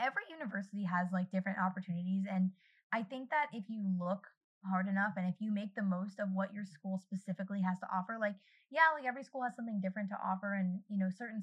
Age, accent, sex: 20-39, American, female